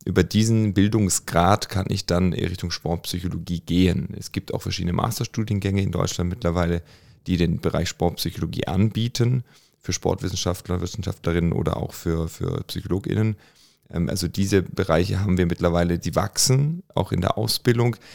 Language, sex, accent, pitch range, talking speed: German, male, German, 85-100 Hz, 140 wpm